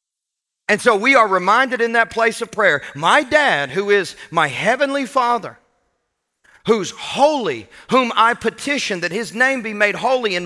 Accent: American